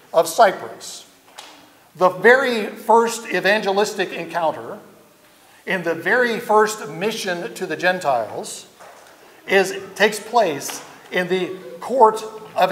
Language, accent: English, American